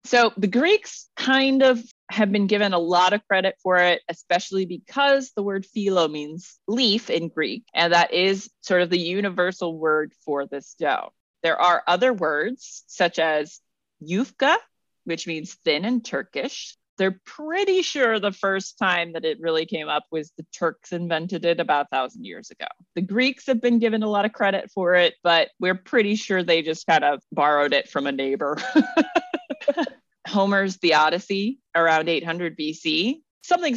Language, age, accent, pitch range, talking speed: English, 30-49, American, 165-230 Hz, 175 wpm